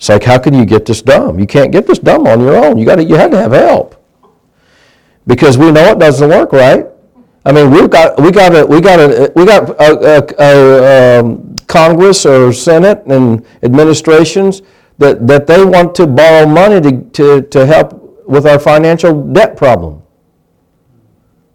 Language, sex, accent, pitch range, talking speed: English, male, American, 125-160 Hz, 155 wpm